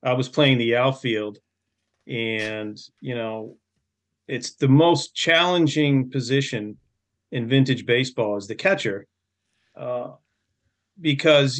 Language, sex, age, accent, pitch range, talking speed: English, male, 40-59, American, 115-140 Hz, 110 wpm